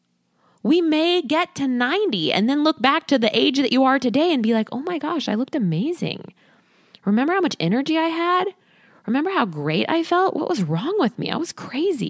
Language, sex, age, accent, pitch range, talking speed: English, female, 20-39, American, 170-255 Hz, 220 wpm